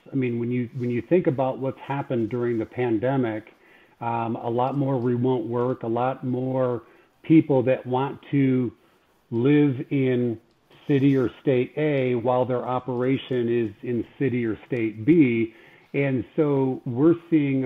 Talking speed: 155 wpm